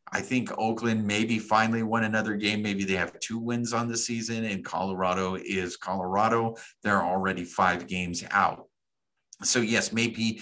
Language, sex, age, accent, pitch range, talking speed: English, male, 50-69, American, 110-160 Hz, 165 wpm